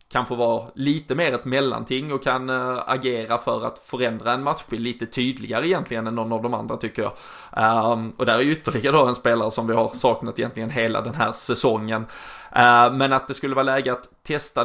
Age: 20-39